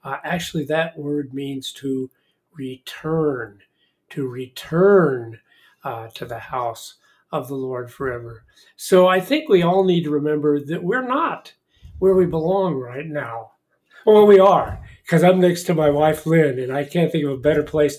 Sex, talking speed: male, 170 wpm